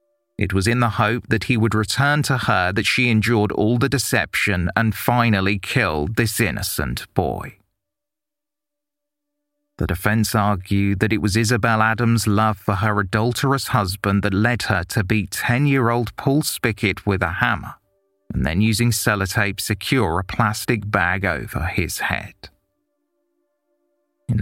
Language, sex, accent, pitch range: English, male, British, 100-125 Hz